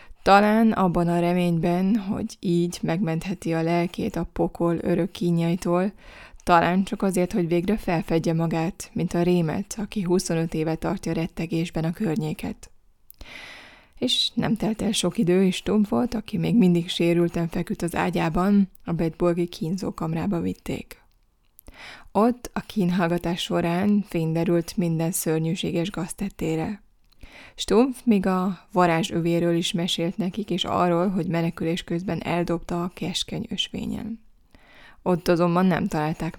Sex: female